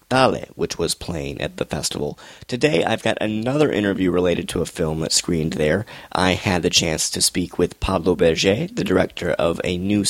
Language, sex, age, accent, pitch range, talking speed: English, male, 30-49, American, 90-110 Hz, 195 wpm